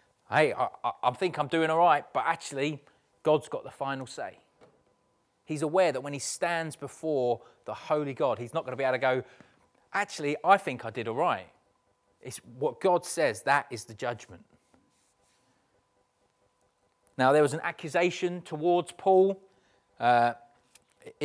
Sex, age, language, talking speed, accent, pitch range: male, 30-49, English, 160 wpm, British, 130-165 Hz